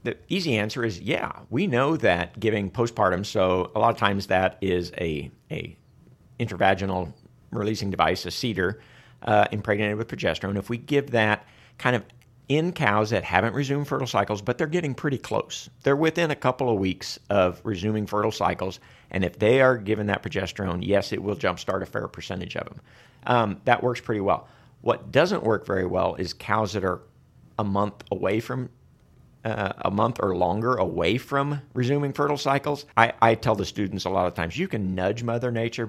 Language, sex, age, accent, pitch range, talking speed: English, male, 50-69, American, 100-125 Hz, 190 wpm